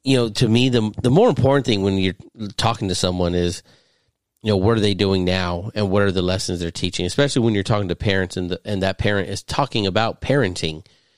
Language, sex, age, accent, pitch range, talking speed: English, male, 40-59, American, 90-115 Hz, 235 wpm